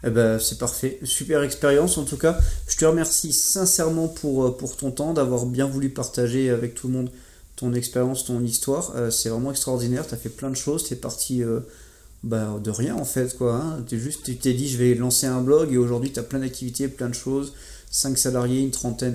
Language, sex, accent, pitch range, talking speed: French, male, French, 120-140 Hz, 225 wpm